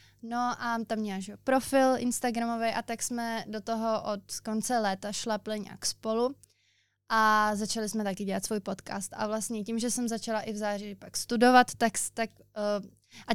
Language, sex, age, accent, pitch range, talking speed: Czech, female, 20-39, native, 195-225 Hz, 175 wpm